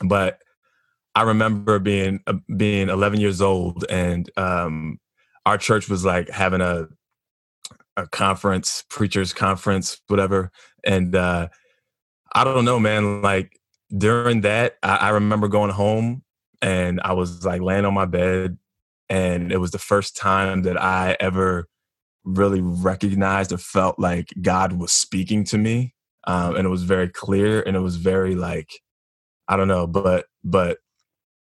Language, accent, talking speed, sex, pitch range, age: English, American, 150 wpm, male, 90-105 Hz, 20-39